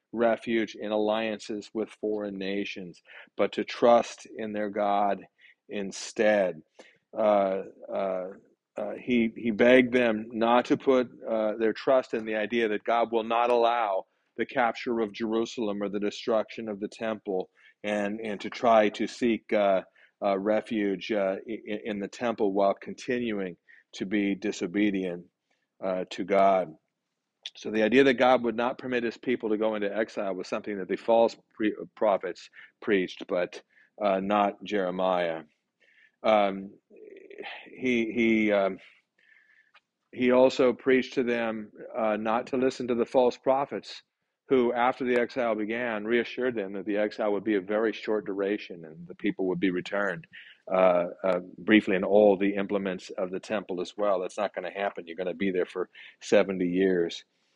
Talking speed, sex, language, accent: 165 wpm, male, English, American